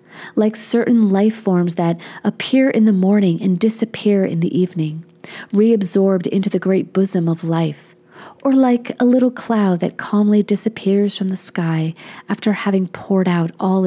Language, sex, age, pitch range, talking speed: English, female, 30-49, 175-225 Hz, 160 wpm